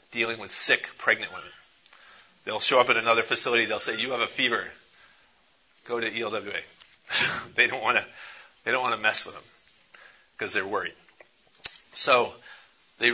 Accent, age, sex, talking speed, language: American, 40-59, male, 145 wpm, English